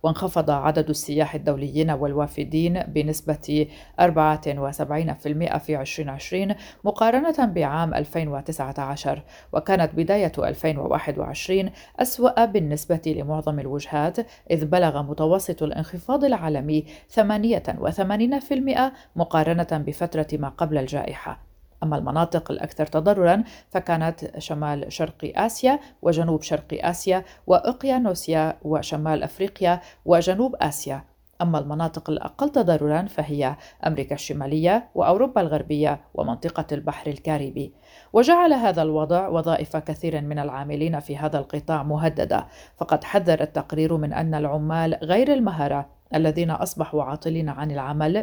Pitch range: 150-180 Hz